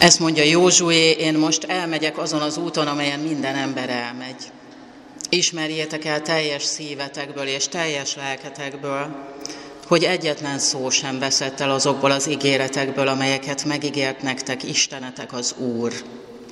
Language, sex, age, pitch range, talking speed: Hungarian, female, 40-59, 140-155 Hz, 125 wpm